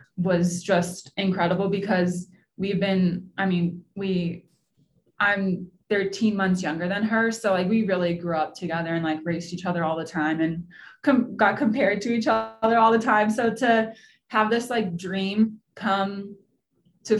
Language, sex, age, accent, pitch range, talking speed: English, female, 20-39, American, 175-220 Hz, 170 wpm